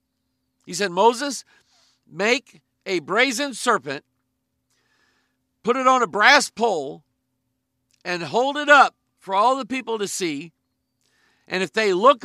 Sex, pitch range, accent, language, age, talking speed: male, 180-240 Hz, American, English, 50-69, 130 wpm